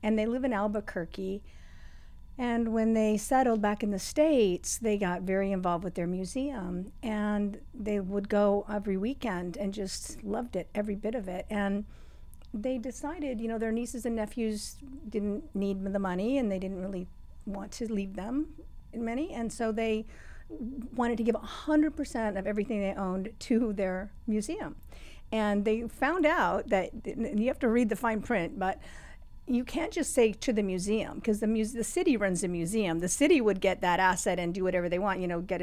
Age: 50-69